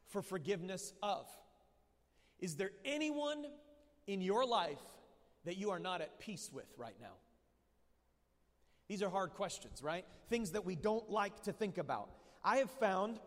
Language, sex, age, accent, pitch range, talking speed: English, male, 30-49, American, 195-230 Hz, 155 wpm